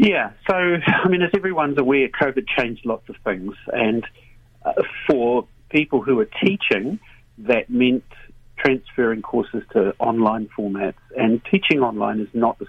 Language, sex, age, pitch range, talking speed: English, male, 50-69, 105-120 Hz, 150 wpm